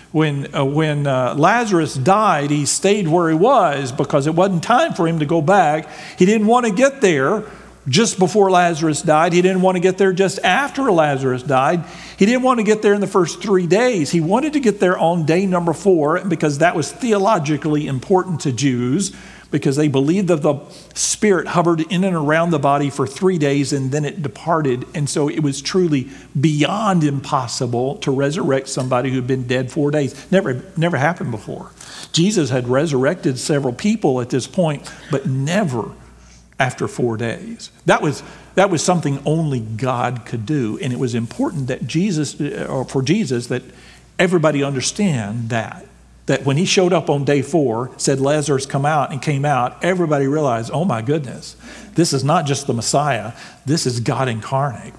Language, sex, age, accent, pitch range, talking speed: English, male, 50-69, American, 130-180 Hz, 185 wpm